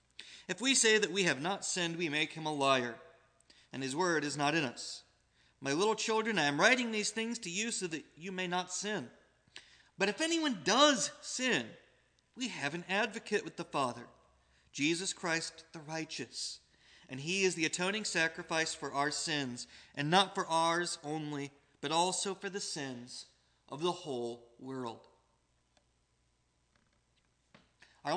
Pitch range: 145-200 Hz